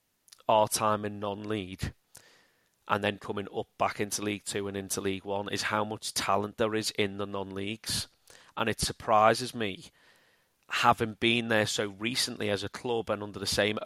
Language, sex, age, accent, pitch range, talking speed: English, male, 30-49, British, 100-110 Hz, 185 wpm